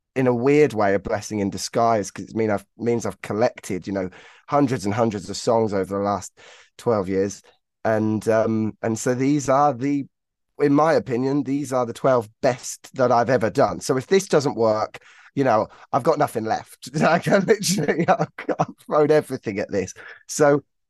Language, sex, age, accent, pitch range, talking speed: English, male, 20-39, British, 110-155 Hz, 190 wpm